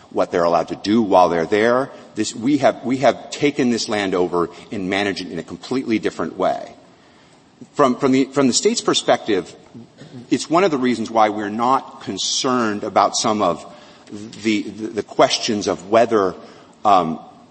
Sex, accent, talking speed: male, American, 175 wpm